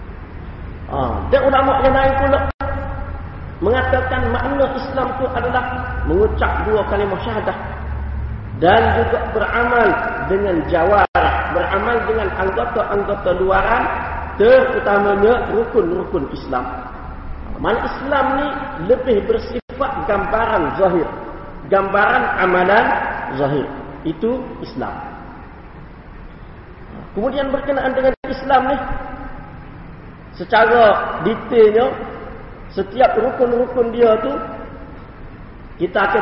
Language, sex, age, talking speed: Malay, male, 40-59, 85 wpm